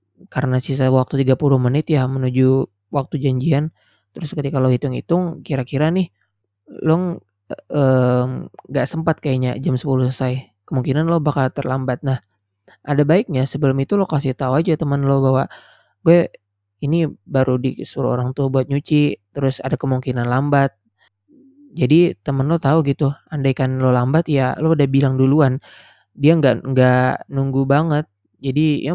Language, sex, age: Indonesian, male, 20-39